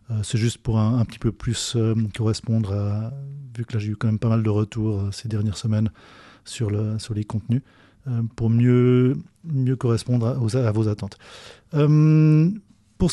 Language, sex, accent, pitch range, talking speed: French, male, French, 110-130 Hz, 195 wpm